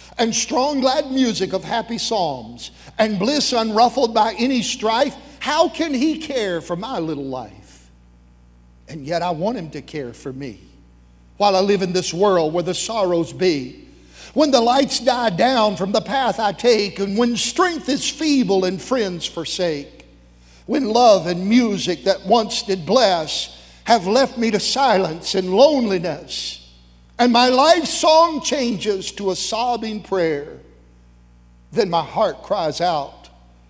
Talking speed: 155 wpm